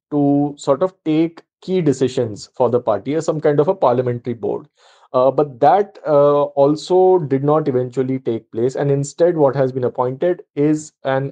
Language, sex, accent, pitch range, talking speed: English, male, Indian, 135-165 Hz, 180 wpm